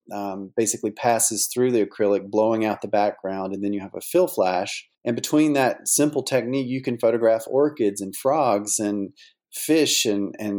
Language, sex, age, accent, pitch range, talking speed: English, male, 40-59, American, 100-125 Hz, 175 wpm